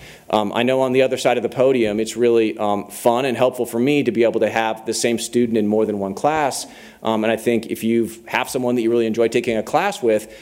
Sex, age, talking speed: male, 40-59, 270 wpm